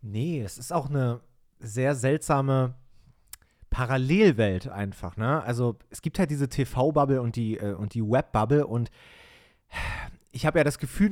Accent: German